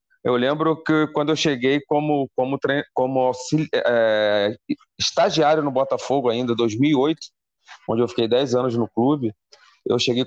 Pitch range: 120-150 Hz